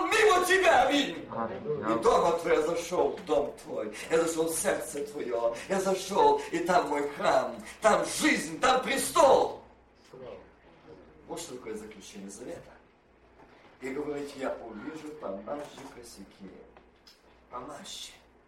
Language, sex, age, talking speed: Russian, male, 50-69, 110 wpm